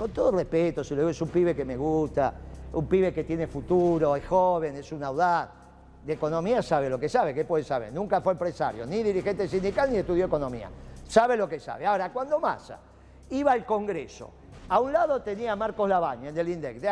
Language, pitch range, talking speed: Spanish, 170-245 Hz, 210 wpm